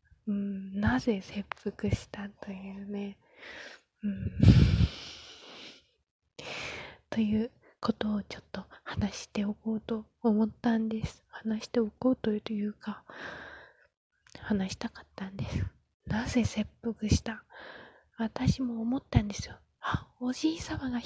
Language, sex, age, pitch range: Japanese, female, 20-39, 210-240 Hz